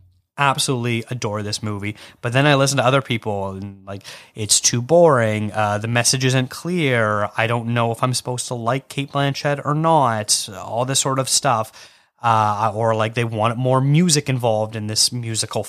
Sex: male